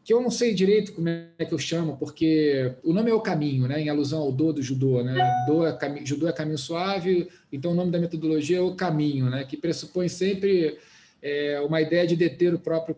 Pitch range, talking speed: 145-175 Hz, 230 wpm